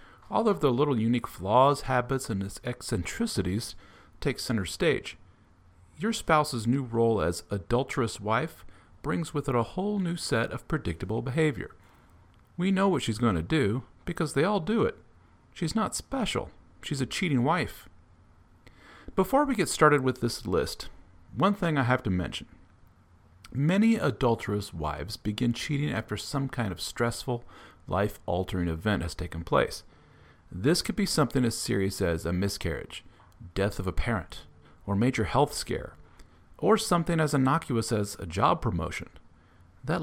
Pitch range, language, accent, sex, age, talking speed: 90-135 Hz, English, American, male, 40-59, 155 wpm